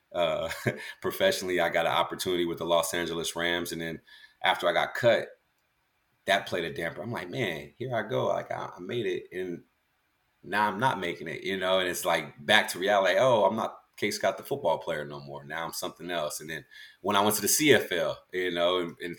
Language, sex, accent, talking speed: English, male, American, 215 wpm